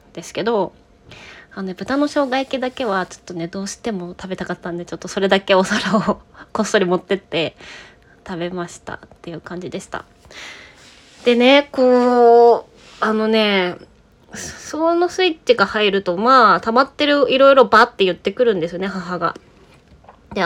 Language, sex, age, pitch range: Japanese, female, 20-39, 185-265 Hz